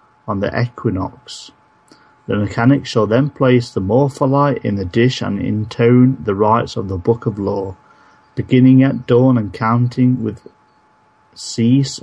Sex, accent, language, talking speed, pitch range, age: male, British, English, 145 wpm, 110-125 Hz, 40-59